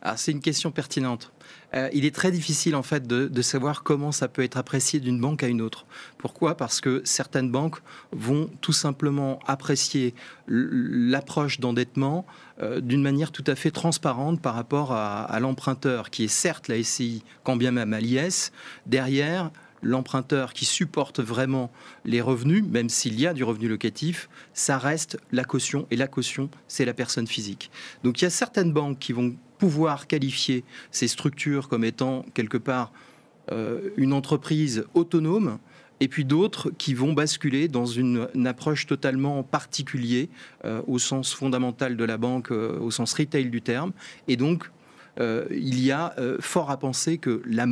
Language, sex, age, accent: French, male, 30-49, French